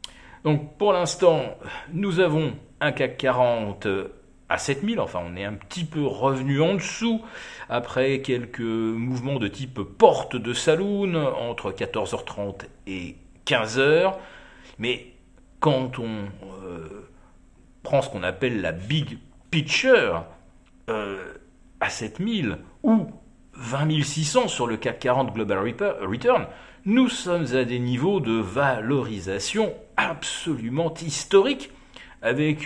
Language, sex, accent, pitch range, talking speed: French, male, French, 105-170 Hz, 115 wpm